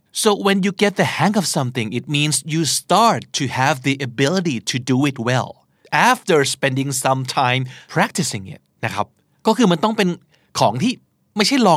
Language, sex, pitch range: Thai, male, 130-190 Hz